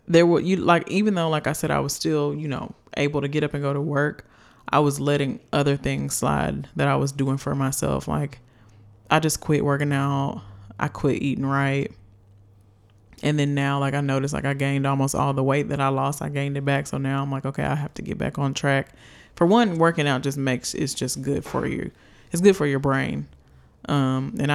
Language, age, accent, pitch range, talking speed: English, 20-39, American, 135-145 Hz, 230 wpm